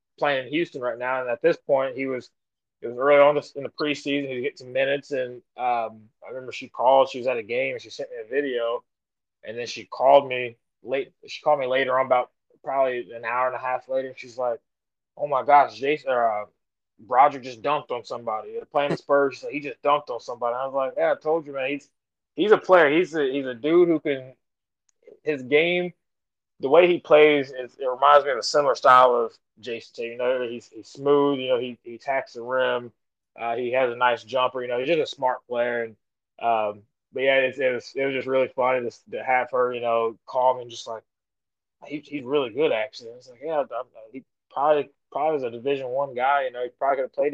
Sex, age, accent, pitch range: male, 20-39, American, 125-145 Hz